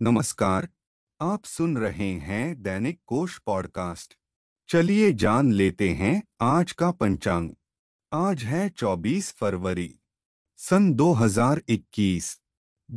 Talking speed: 95 wpm